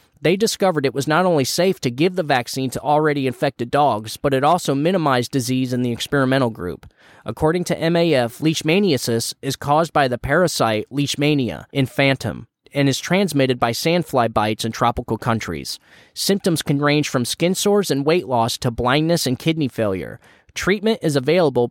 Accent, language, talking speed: American, English, 170 wpm